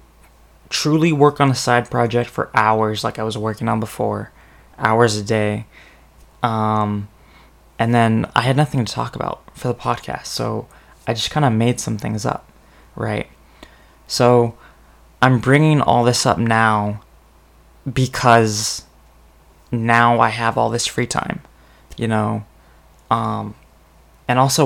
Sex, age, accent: male, 20-39, American